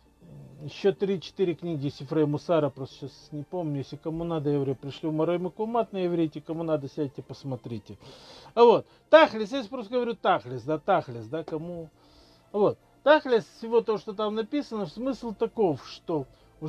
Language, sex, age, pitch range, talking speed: Russian, male, 50-69, 150-220 Hz, 170 wpm